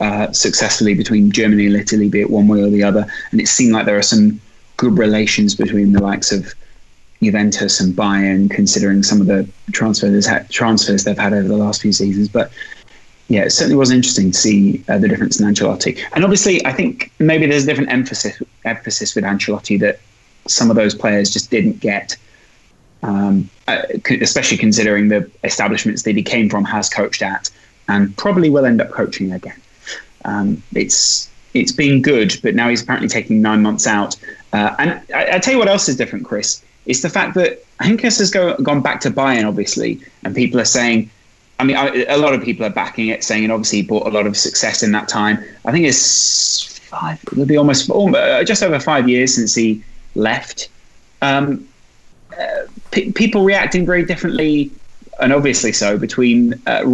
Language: English